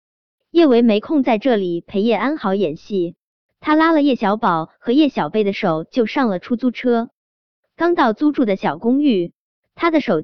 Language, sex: Chinese, male